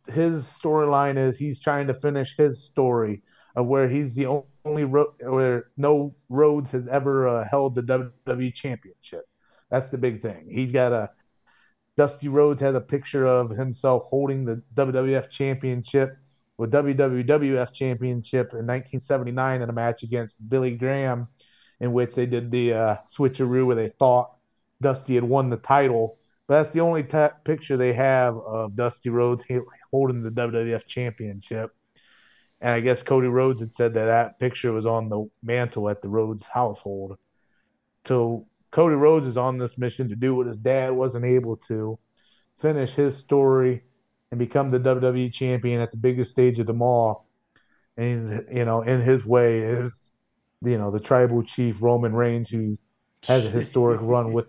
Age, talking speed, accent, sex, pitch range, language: 30-49, 170 wpm, American, male, 115-135 Hz, English